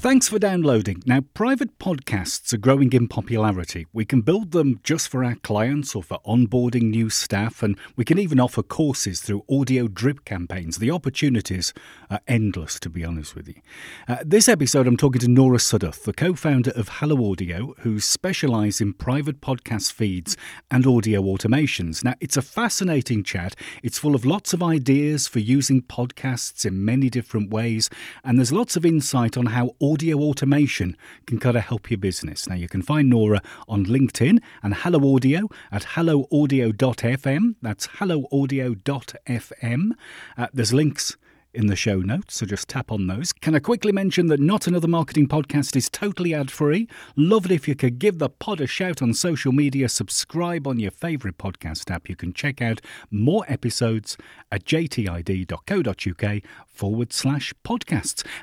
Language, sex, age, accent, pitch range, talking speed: English, male, 40-59, British, 105-150 Hz, 170 wpm